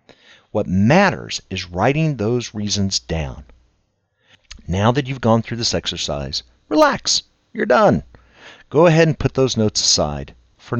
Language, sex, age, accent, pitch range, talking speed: English, male, 50-69, American, 85-140 Hz, 140 wpm